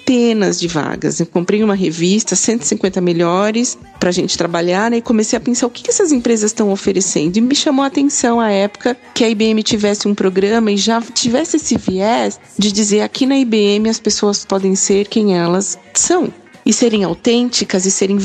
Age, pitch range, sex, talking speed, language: 40-59, 185-225 Hz, female, 195 wpm, Portuguese